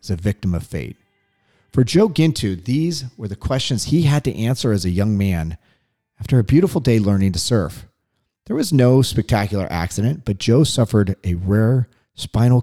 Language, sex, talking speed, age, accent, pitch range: English, male, 180 wpm, 40-59, American, 100-130 Hz